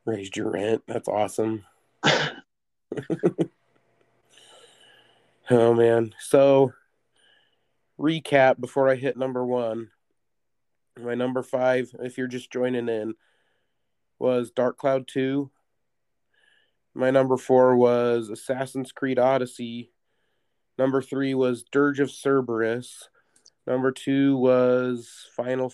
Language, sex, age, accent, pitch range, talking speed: English, male, 30-49, American, 120-135 Hz, 100 wpm